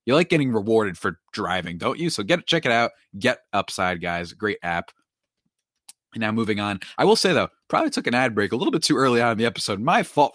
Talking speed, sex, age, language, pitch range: 245 wpm, male, 20-39, English, 100-160 Hz